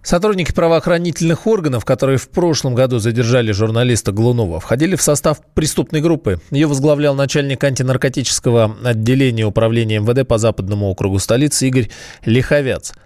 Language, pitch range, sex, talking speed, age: Russian, 110-140 Hz, male, 130 wpm, 20-39